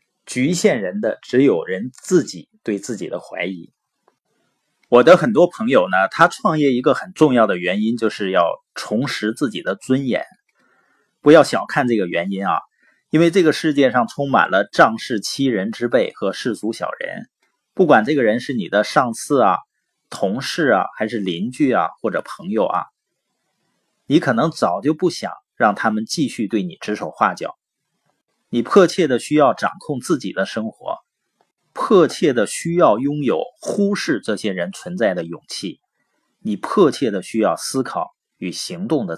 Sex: male